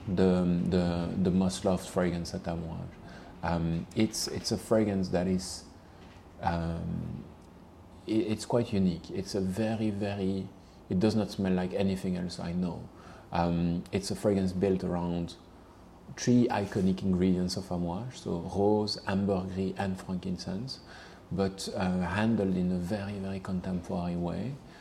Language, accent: Italian, French